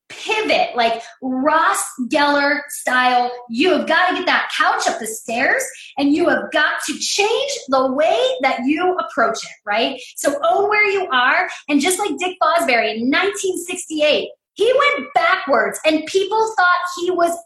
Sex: female